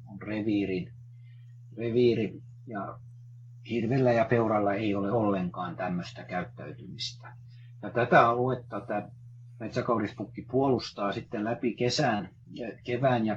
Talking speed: 95 wpm